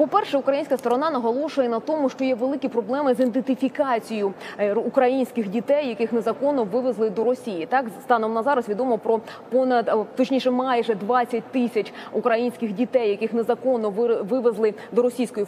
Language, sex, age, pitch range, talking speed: Ukrainian, female, 20-39, 230-270 Hz, 145 wpm